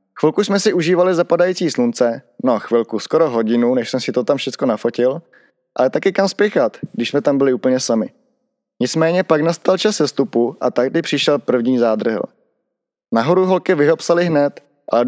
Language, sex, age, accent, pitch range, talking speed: Czech, male, 20-39, native, 125-175 Hz, 165 wpm